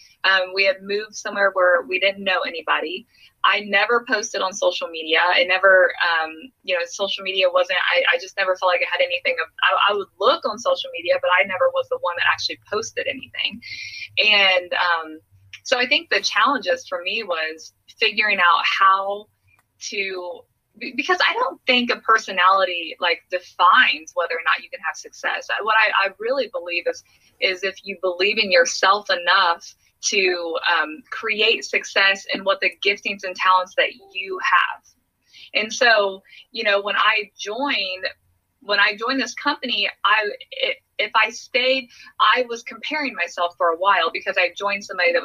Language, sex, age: English, female, 20-39